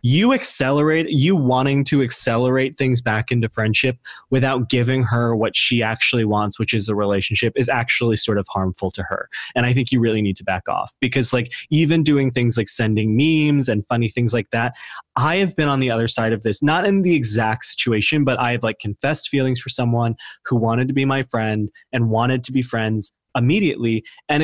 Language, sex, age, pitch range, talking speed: English, male, 20-39, 115-145 Hz, 210 wpm